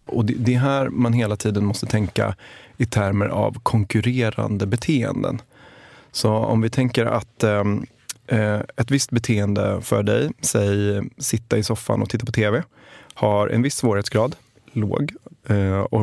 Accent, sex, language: native, male, Swedish